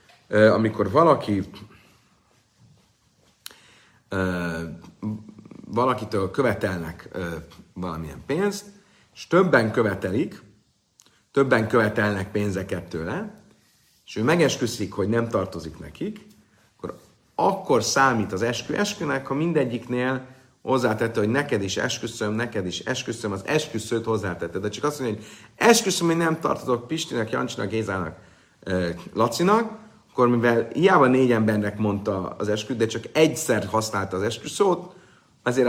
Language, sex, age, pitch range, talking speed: Hungarian, male, 50-69, 95-130 Hz, 115 wpm